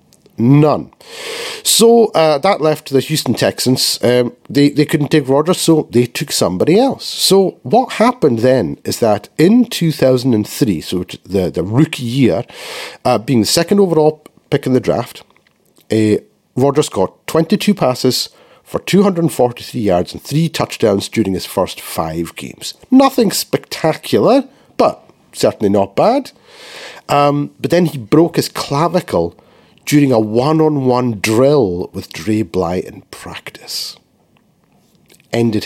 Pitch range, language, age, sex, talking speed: 115-165 Hz, English, 50-69, male, 135 wpm